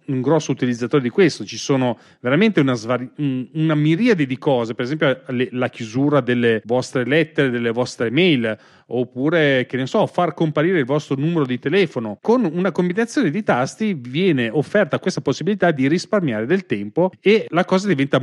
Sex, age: male, 30-49